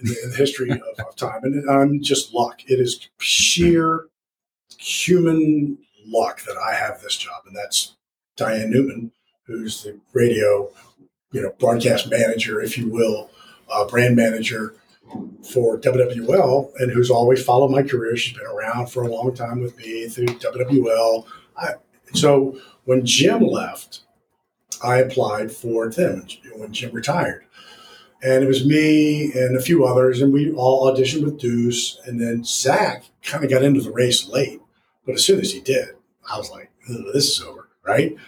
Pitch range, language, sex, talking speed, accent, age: 120-145 Hz, English, male, 170 wpm, American, 40-59